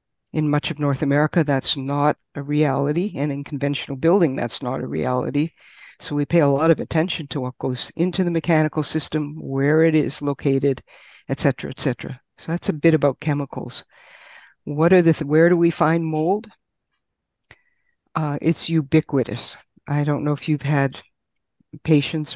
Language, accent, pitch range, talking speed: English, American, 140-160 Hz, 170 wpm